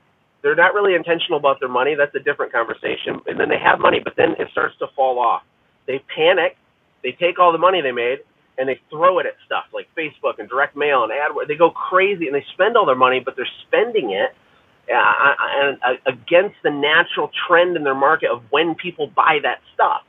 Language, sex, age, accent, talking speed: English, male, 30-49, American, 220 wpm